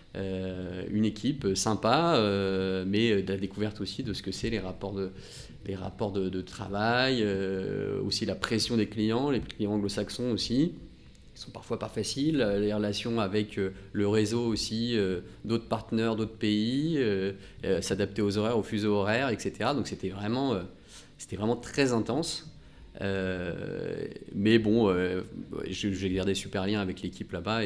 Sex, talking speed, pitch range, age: male, 170 wpm, 95-115 Hz, 30-49